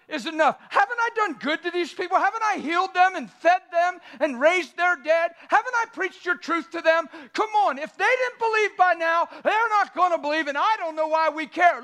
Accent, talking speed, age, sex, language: American, 240 wpm, 50-69, male, English